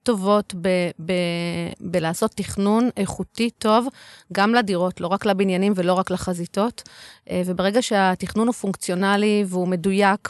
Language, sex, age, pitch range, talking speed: Hebrew, female, 30-49, 180-215 Hz, 120 wpm